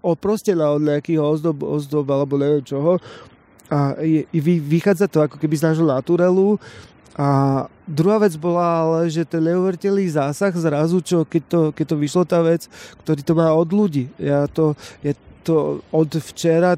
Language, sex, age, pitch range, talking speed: Slovak, male, 30-49, 145-170 Hz, 165 wpm